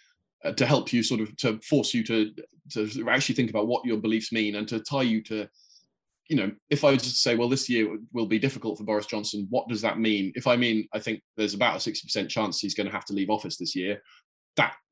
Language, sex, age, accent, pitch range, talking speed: English, male, 20-39, British, 105-135 Hz, 250 wpm